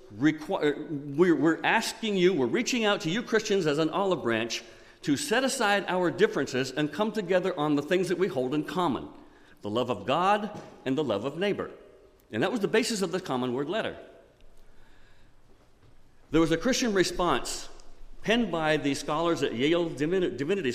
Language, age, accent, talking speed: English, 50-69, American, 175 wpm